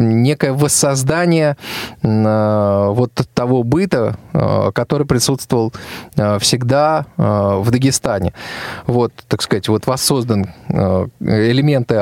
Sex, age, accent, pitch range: male, 20-39, native, 115-140 Hz